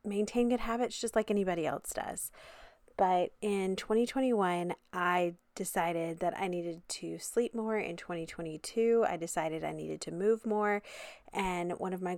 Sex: female